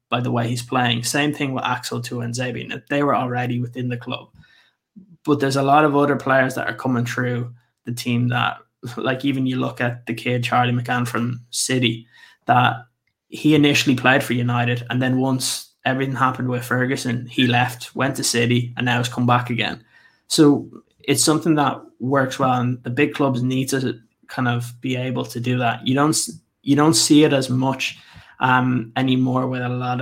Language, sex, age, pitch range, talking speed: English, male, 20-39, 120-135 Hz, 200 wpm